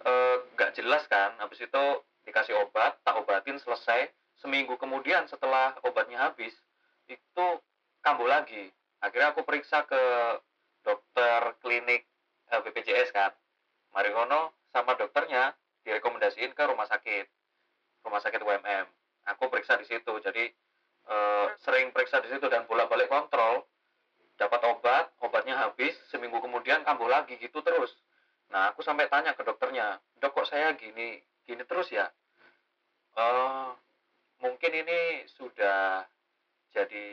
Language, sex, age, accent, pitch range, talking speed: Indonesian, male, 30-49, native, 115-170 Hz, 125 wpm